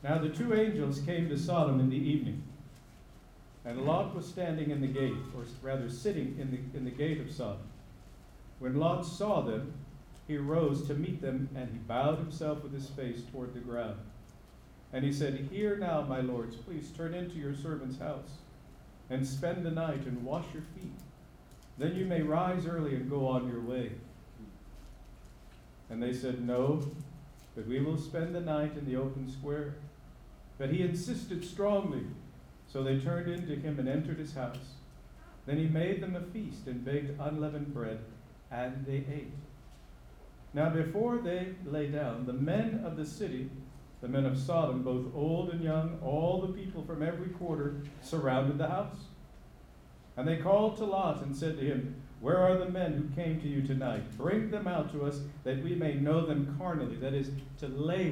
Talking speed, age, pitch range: 185 wpm, 50-69, 130-160 Hz